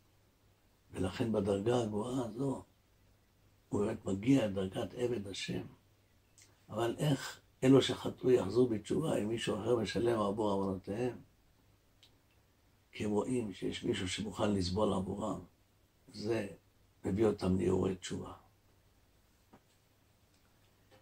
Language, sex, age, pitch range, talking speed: Hebrew, male, 60-79, 95-110 Hz, 100 wpm